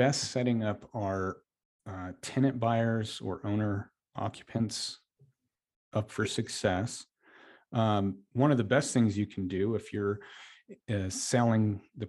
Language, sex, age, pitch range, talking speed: English, male, 40-59, 95-120 Hz, 135 wpm